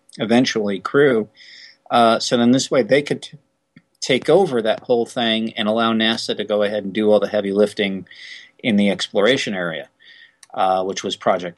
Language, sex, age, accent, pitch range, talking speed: English, male, 40-59, American, 100-120 Hz, 175 wpm